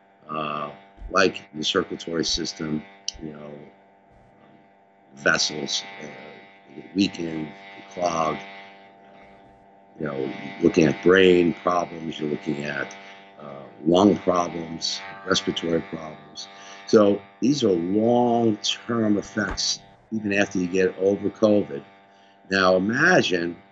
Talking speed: 100 wpm